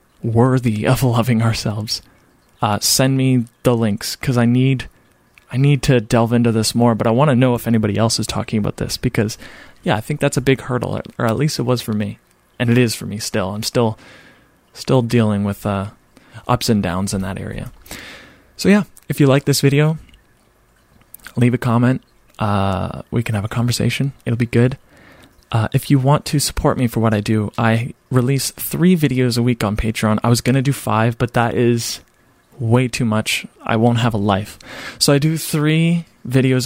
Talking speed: 205 wpm